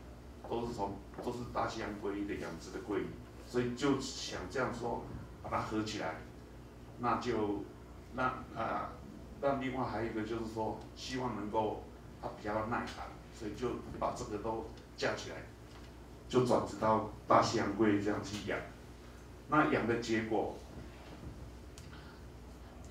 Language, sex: Chinese, male